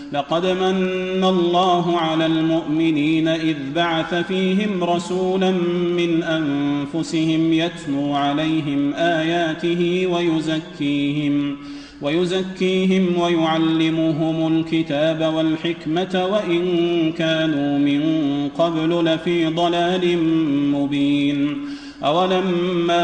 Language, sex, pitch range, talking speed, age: Arabic, male, 155-175 Hz, 70 wpm, 40-59